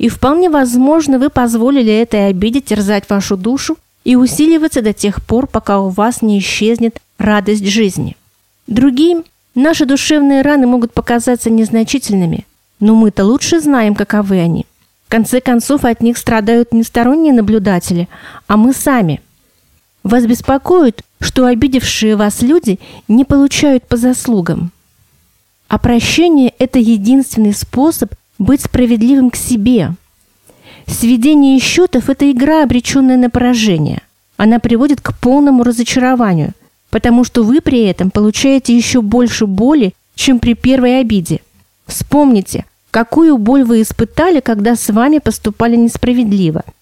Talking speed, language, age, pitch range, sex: 130 wpm, Russian, 40-59, 215-265 Hz, female